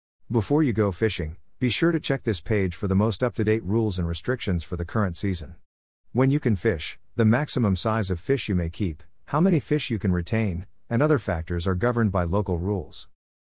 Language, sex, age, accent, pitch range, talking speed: English, male, 50-69, American, 90-115 Hz, 220 wpm